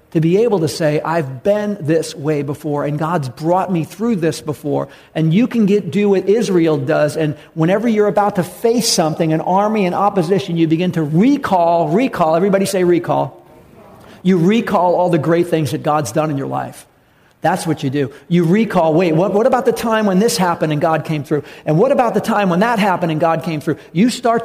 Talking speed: 220 wpm